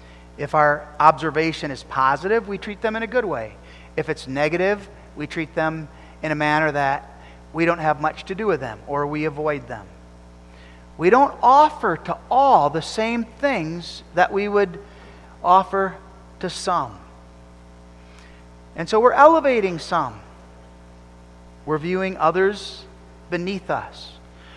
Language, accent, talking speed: English, American, 140 wpm